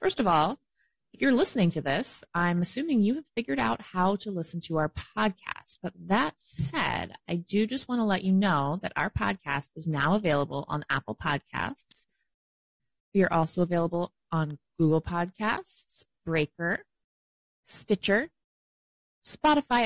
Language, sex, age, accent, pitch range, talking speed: English, female, 20-39, American, 145-185 Hz, 150 wpm